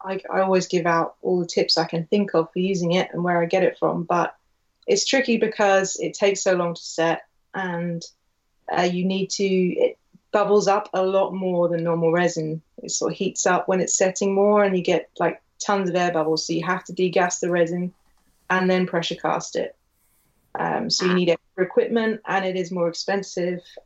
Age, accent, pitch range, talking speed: 20-39, British, 170-200 Hz, 215 wpm